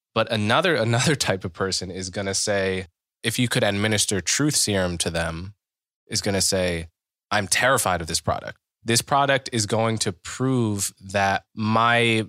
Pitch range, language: 95-115 Hz, English